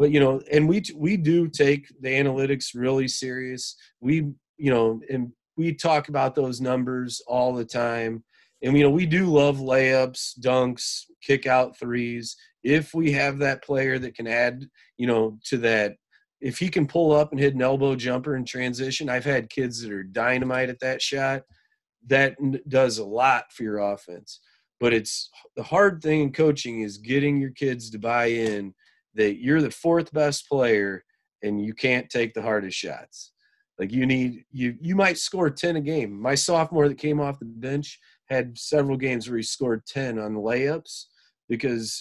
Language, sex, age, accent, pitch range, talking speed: English, male, 30-49, American, 120-150 Hz, 185 wpm